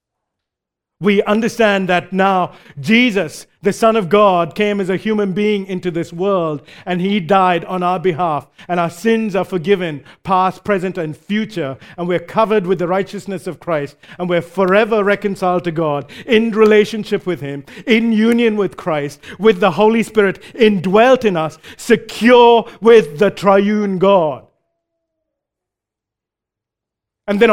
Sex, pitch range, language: male, 165-220 Hz, English